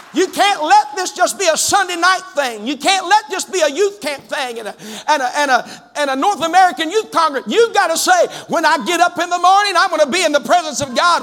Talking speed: 240 wpm